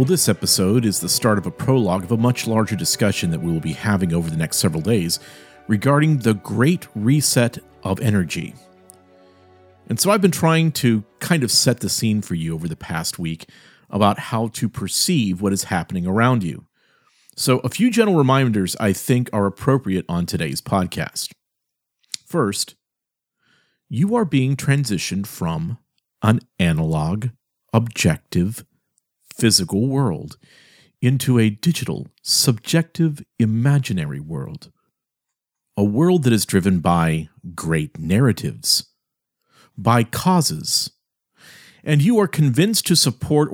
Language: English